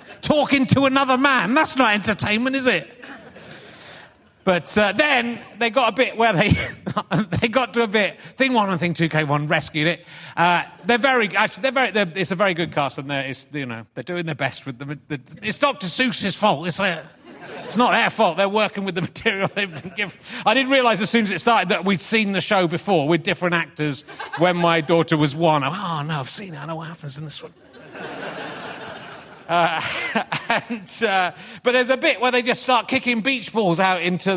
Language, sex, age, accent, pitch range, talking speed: English, male, 30-49, British, 170-230 Hz, 220 wpm